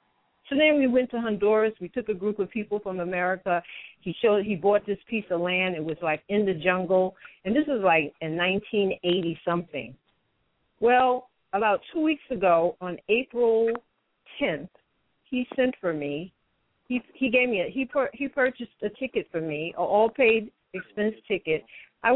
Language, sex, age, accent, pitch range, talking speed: English, female, 50-69, American, 185-250 Hz, 175 wpm